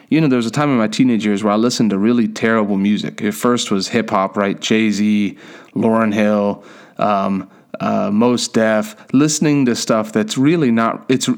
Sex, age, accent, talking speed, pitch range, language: male, 30-49, American, 190 wpm, 110-135 Hz, English